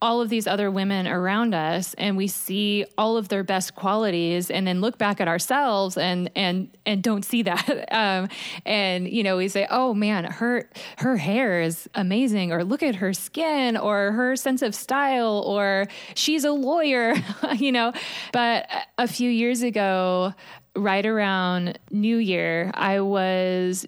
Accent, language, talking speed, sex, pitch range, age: American, English, 170 wpm, female, 185-230 Hz, 20-39